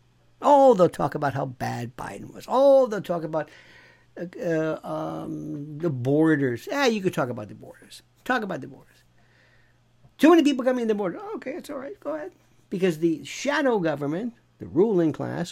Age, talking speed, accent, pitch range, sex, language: 60-79, 185 wpm, American, 130-200 Hz, male, English